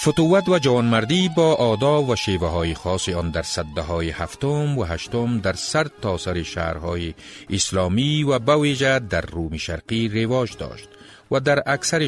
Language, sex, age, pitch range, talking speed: Persian, male, 40-59, 85-120 Hz, 155 wpm